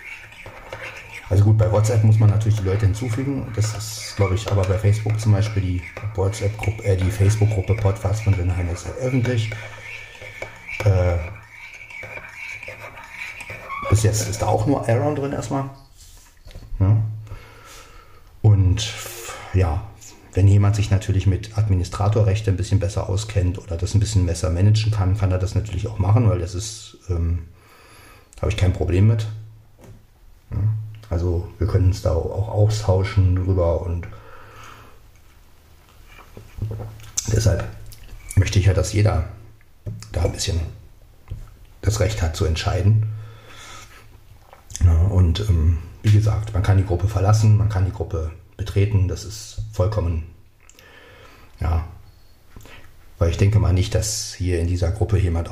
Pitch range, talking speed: 90-105 Hz, 140 wpm